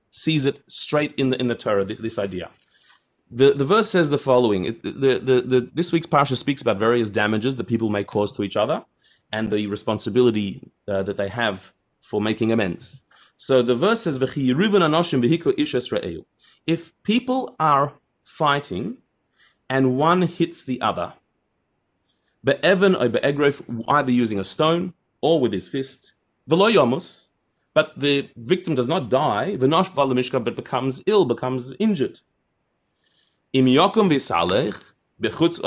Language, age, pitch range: English, 30-49, 120-165 Hz